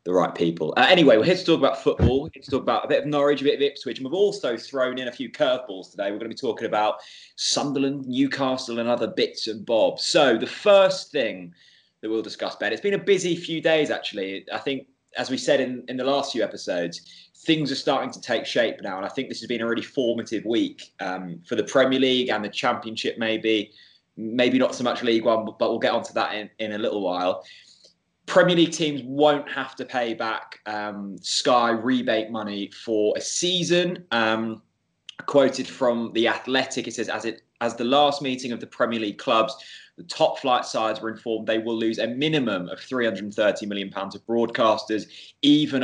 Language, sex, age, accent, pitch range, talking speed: English, male, 20-39, British, 110-140 Hz, 215 wpm